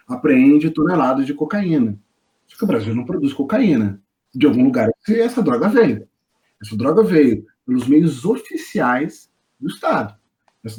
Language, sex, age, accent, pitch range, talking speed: Portuguese, male, 40-59, Brazilian, 140-230 Hz, 145 wpm